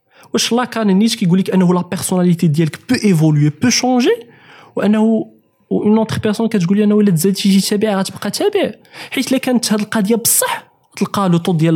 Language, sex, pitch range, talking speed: Arabic, male, 155-205 Hz, 170 wpm